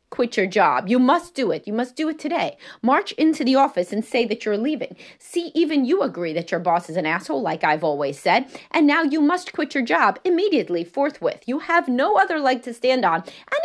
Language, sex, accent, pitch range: English, female, American, 210-315 Hz